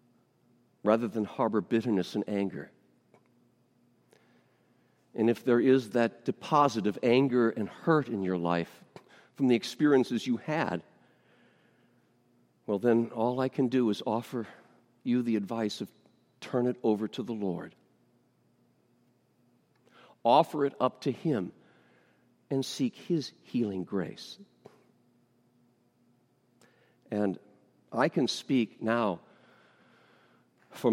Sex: male